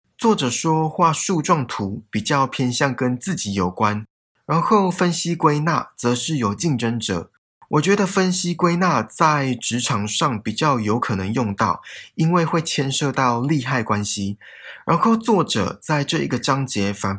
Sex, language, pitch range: male, Chinese, 110-160 Hz